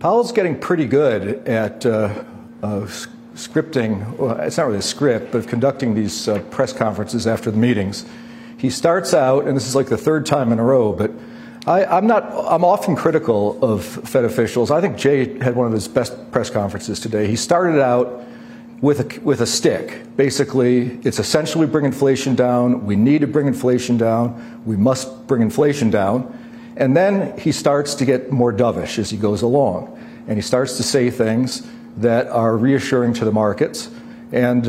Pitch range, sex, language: 115-150 Hz, male, English